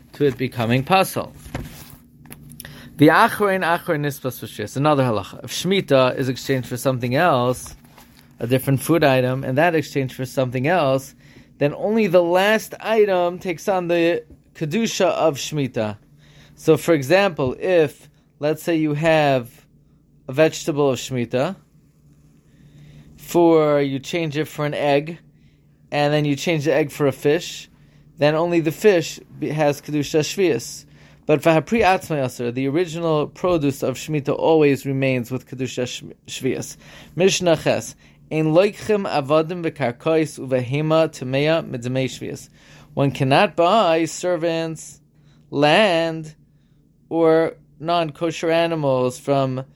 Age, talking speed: 20-39, 120 wpm